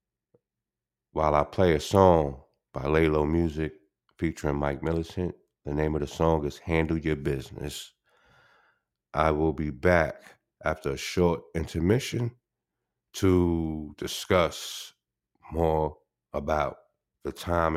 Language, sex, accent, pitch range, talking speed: English, male, American, 75-85 Hz, 115 wpm